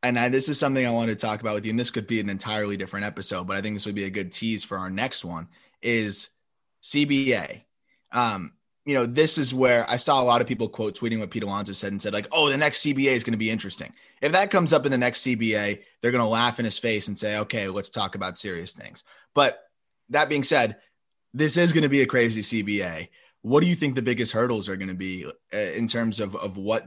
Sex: male